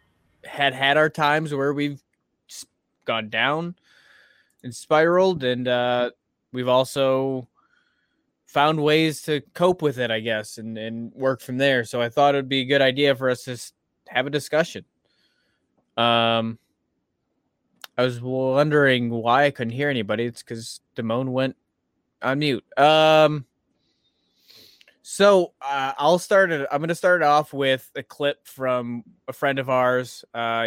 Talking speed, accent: 150 wpm, American